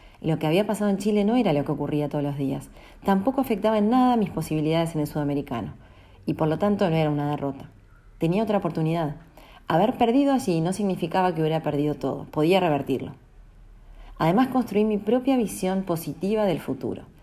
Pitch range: 145-190 Hz